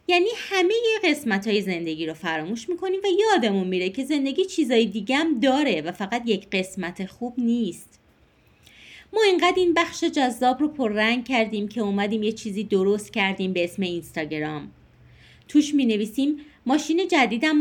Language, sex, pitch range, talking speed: Persian, female, 205-315 Hz, 155 wpm